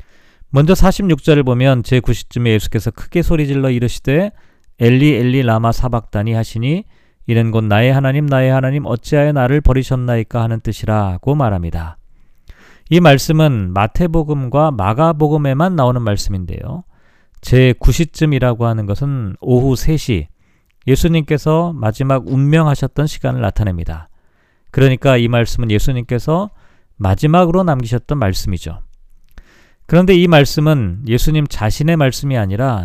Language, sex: Korean, male